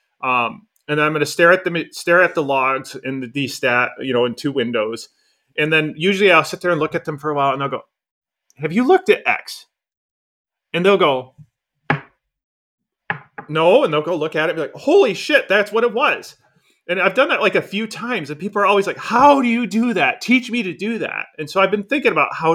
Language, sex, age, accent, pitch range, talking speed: English, male, 30-49, American, 135-195 Hz, 240 wpm